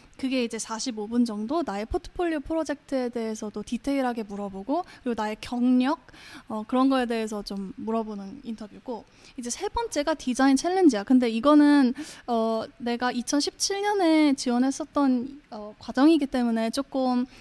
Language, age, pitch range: Korean, 10-29, 230-300 Hz